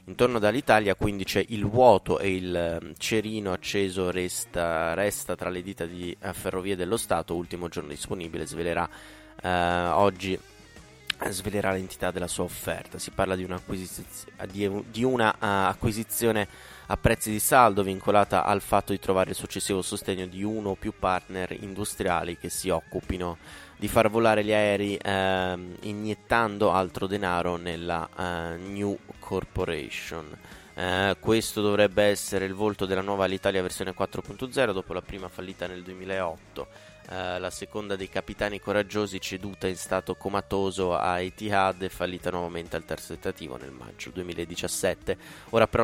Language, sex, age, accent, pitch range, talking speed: Italian, male, 20-39, native, 90-105 Hz, 150 wpm